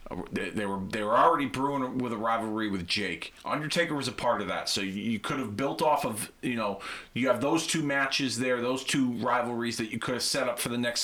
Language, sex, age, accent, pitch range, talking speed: English, male, 40-59, American, 110-145 Hz, 245 wpm